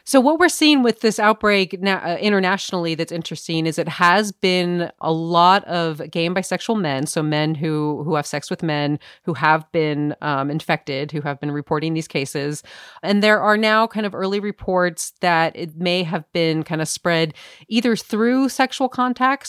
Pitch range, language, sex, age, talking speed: 155-190 Hz, English, female, 30-49, 190 wpm